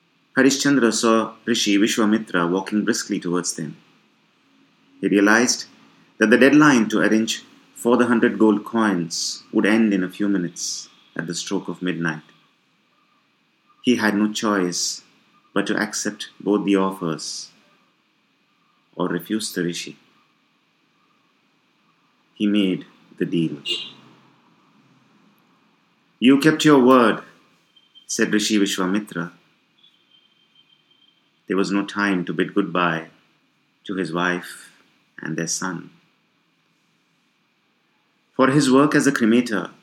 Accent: Indian